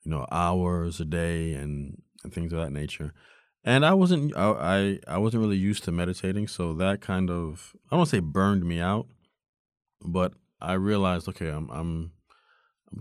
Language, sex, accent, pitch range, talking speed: English, male, American, 75-95 Hz, 190 wpm